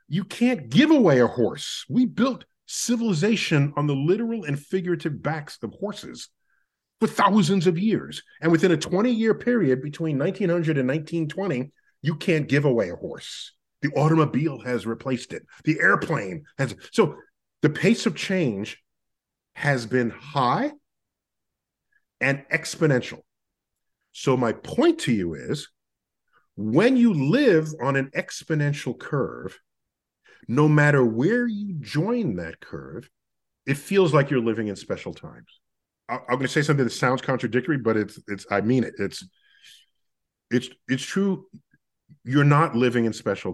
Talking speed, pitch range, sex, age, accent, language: 145 wpm, 140-205 Hz, male, 40-59, American, English